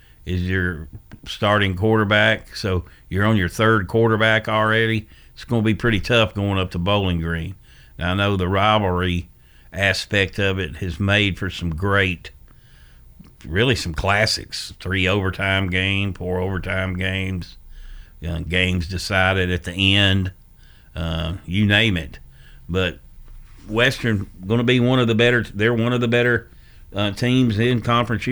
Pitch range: 85-105 Hz